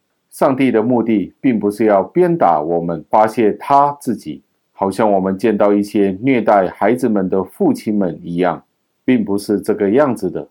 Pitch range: 95-115 Hz